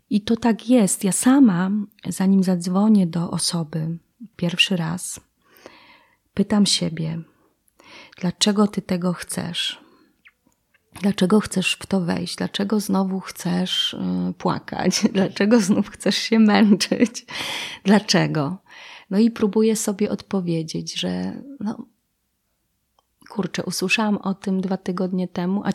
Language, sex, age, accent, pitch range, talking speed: Polish, female, 30-49, native, 180-225 Hz, 110 wpm